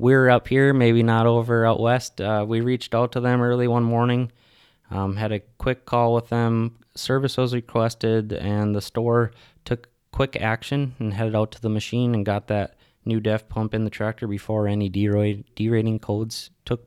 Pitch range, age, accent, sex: 110-125 Hz, 20-39, American, male